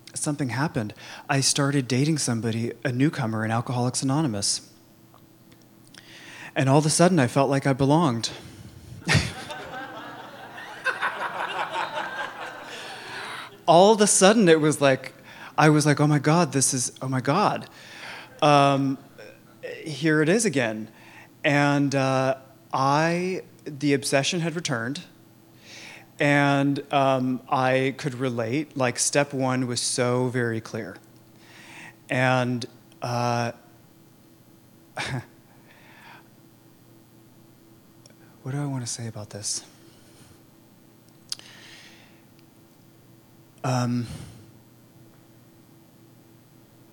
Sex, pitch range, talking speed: male, 115-145 Hz, 95 wpm